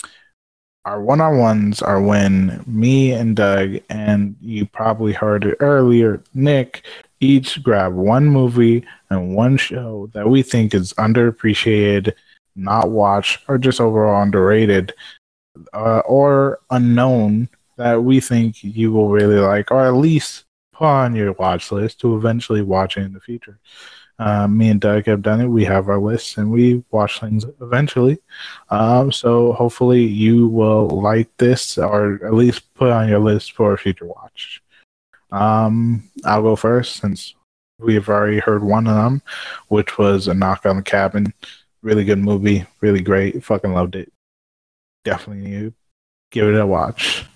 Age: 20-39